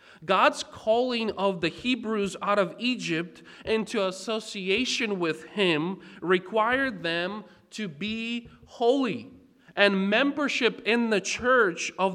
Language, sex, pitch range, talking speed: English, male, 195-235 Hz, 115 wpm